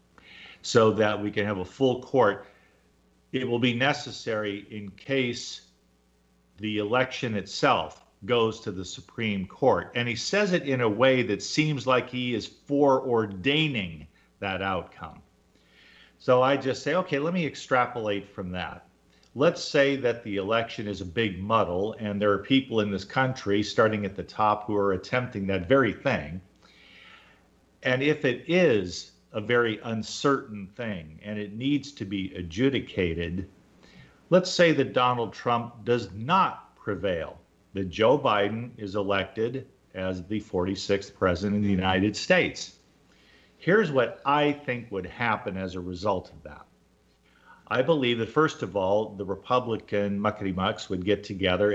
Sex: male